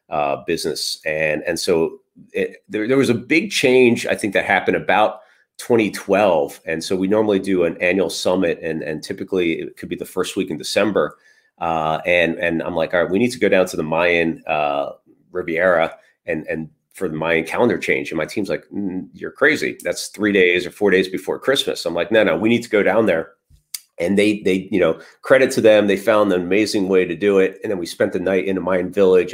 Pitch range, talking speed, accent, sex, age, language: 90-115 Hz, 230 wpm, American, male, 40-59, English